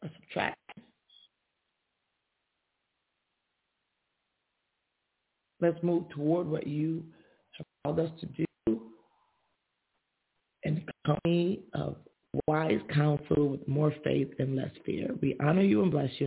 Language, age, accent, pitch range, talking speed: English, 40-59, American, 150-180 Hz, 105 wpm